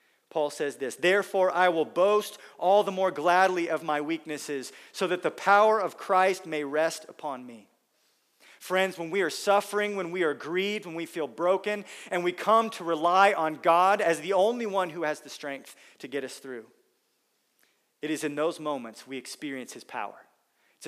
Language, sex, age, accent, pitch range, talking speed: English, male, 40-59, American, 150-195 Hz, 190 wpm